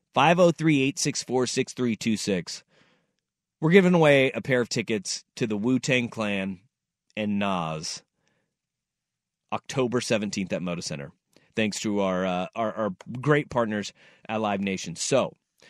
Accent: American